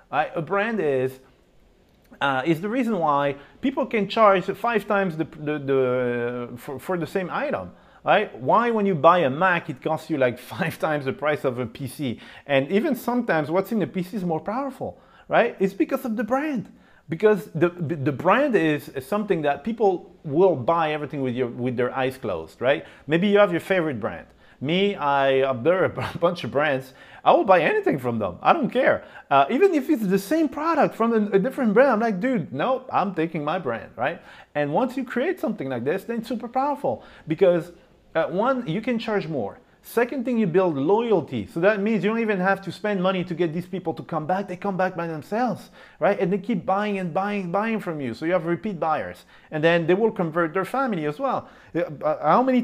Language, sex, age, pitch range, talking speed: English, male, 40-59, 150-215 Hz, 220 wpm